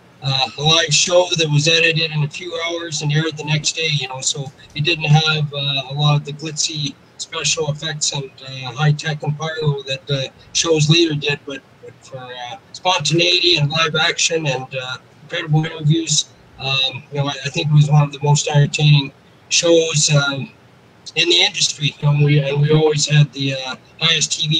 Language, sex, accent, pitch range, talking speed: English, male, American, 140-160 Hz, 195 wpm